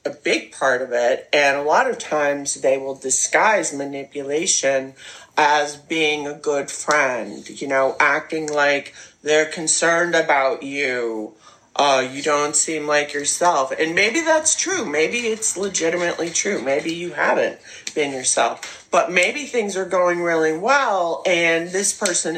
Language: English